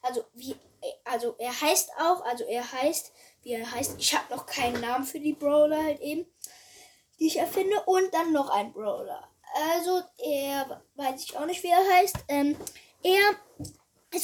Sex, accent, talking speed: female, German, 175 wpm